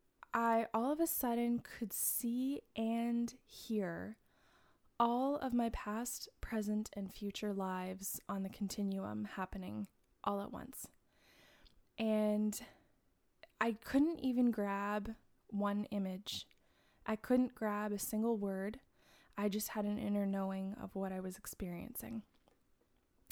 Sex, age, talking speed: female, 20-39, 125 wpm